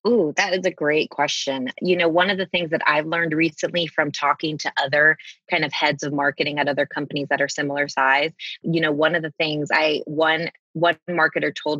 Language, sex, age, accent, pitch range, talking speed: English, female, 20-39, American, 140-165 Hz, 220 wpm